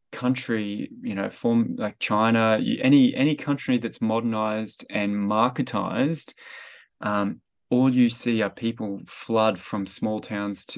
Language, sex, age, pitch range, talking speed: English, male, 20-39, 115-135 Hz, 135 wpm